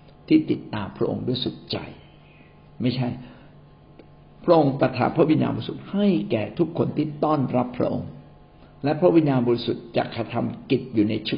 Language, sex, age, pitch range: Thai, male, 60-79, 115-145 Hz